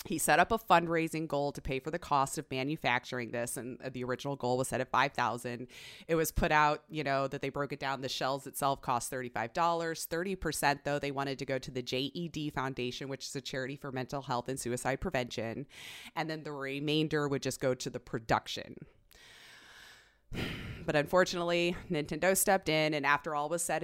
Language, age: English, 30-49